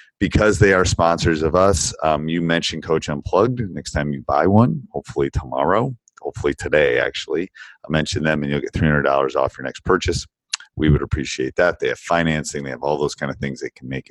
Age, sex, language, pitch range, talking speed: 40-59, male, English, 75-95 Hz, 210 wpm